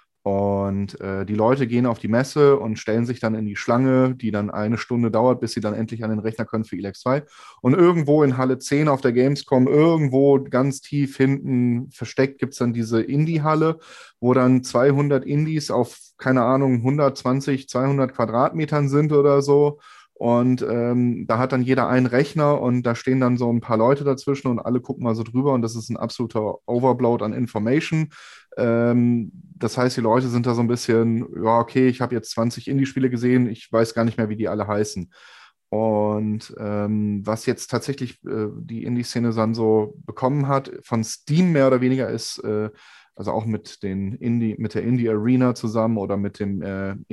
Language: German